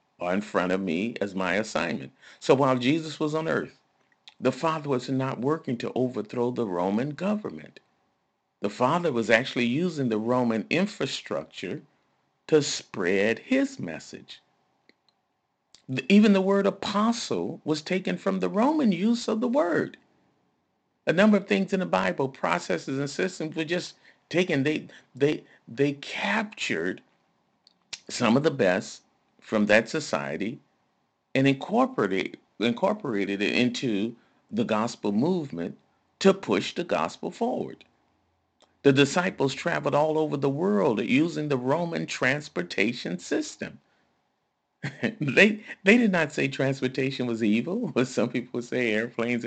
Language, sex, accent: English, male, American